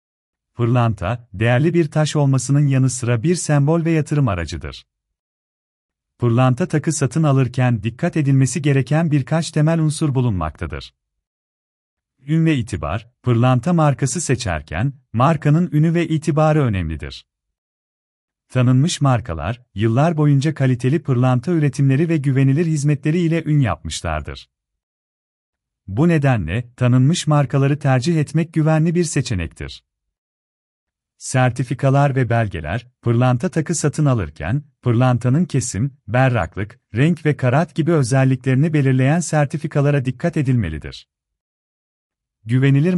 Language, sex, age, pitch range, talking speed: Turkish, male, 40-59, 100-150 Hz, 105 wpm